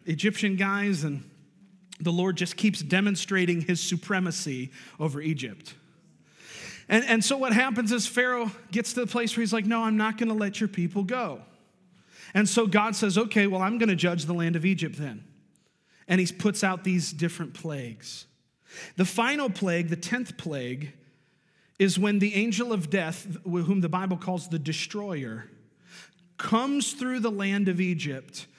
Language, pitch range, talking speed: English, 170-215 Hz, 170 wpm